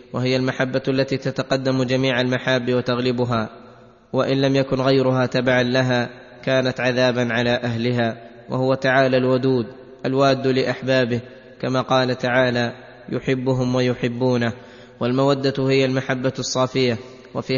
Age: 20-39